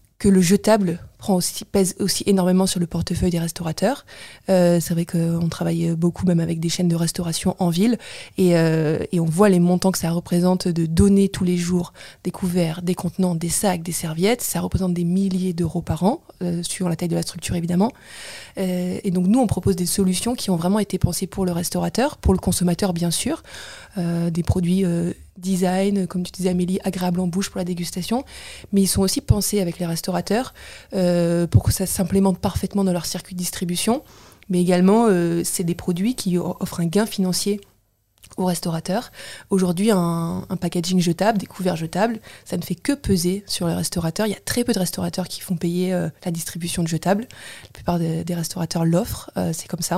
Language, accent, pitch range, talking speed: French, French, 175-195 Hz, 210 wpm